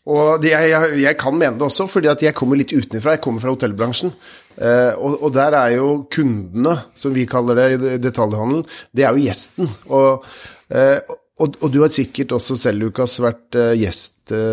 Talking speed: 180 wpm